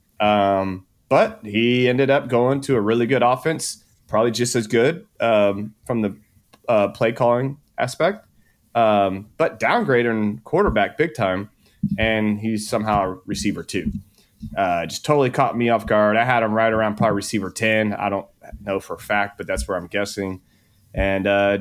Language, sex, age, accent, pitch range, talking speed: English, male, 30-49, American, 100-120 Hz, 170 wpm